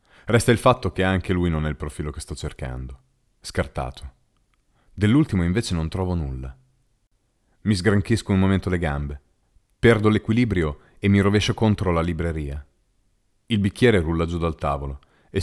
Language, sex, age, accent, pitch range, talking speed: Italian, male, 40-59, native, 75-105 Hz, 155 wpm